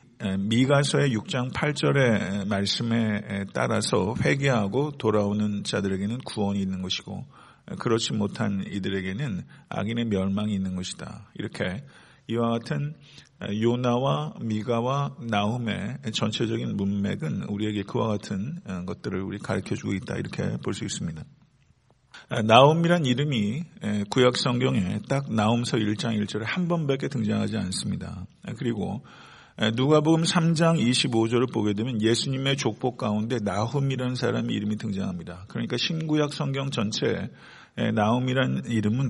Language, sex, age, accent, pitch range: Korean, male, 50-69, native, 105-135 Hz